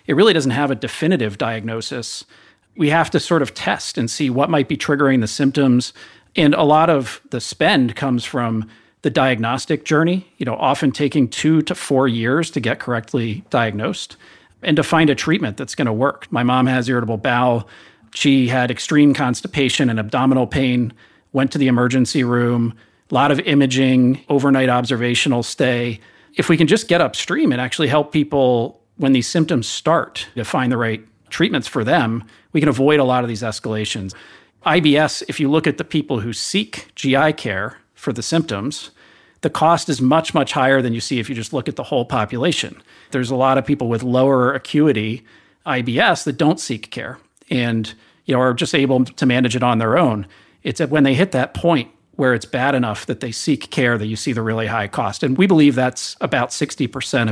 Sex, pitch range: male, 120-145 Hz